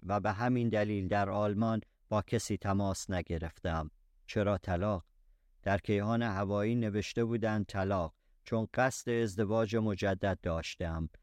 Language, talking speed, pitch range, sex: Persian, 125 wpm, 95-110 Hz, male